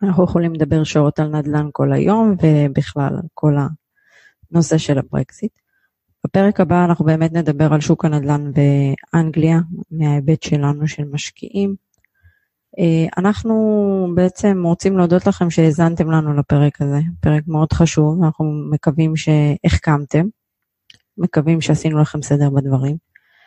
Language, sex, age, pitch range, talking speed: Hebrew, female, 20-39, 145-170 Hz, 120 wpm